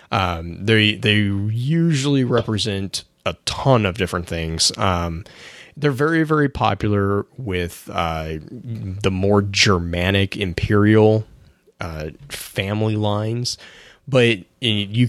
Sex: male